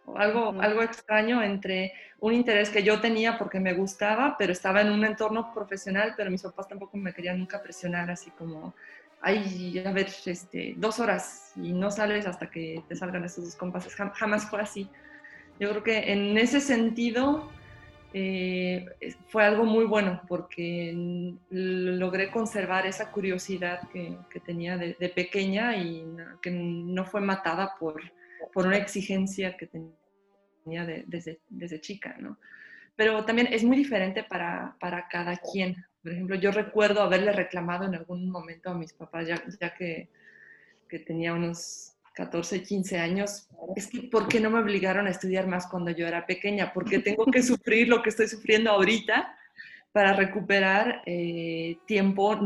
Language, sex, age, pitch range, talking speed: Spanish, female, 20-39, 175-210 Hz, 160 wpm